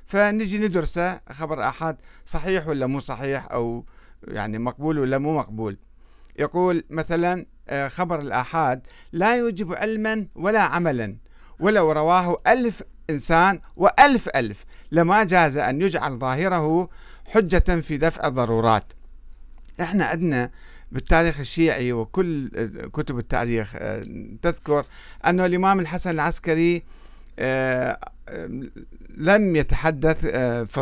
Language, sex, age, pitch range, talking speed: Arabic, male, 50-69, 135-195 Hz, 110 wpm